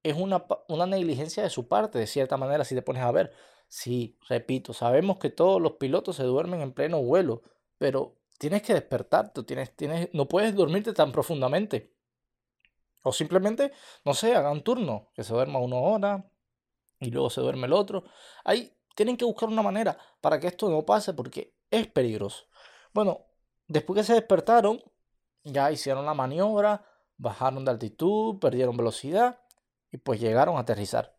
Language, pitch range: Spanish, 135-210 Hz